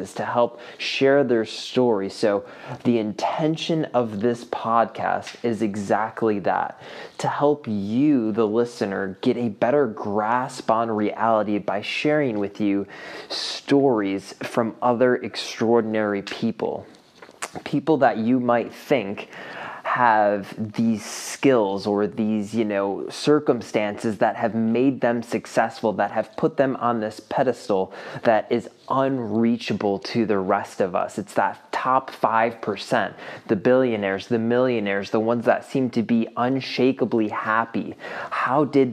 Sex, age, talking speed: male, 20-39, 130 wpm